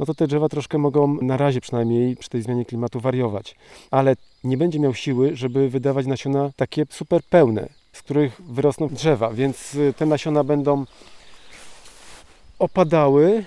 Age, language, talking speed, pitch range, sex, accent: 40-59, Polish, 150 wpm, 130-150 Hz, male, native